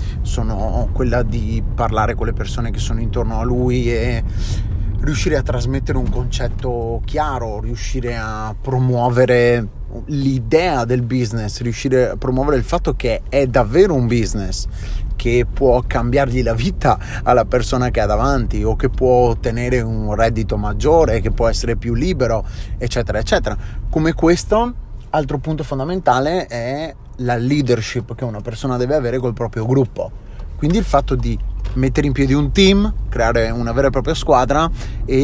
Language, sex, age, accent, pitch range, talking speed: Italian, male, 30-49, native, 115-140 Hz, 155 wpm